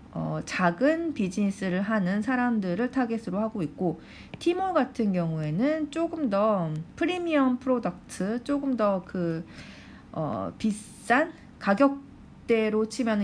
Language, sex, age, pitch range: Korean, female, 40-59, 180-260 Hz